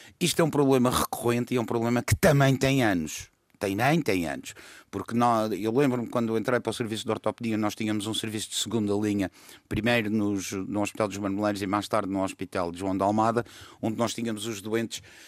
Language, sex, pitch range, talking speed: Portuguese, male, 105-145 Hz, 215 wpm